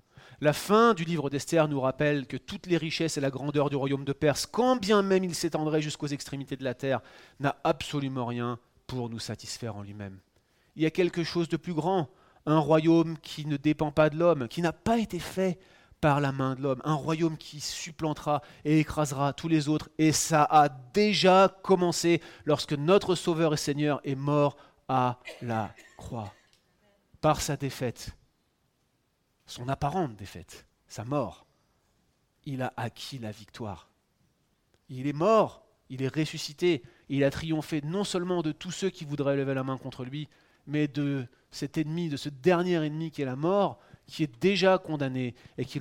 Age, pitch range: 30-49, 130-165 Hz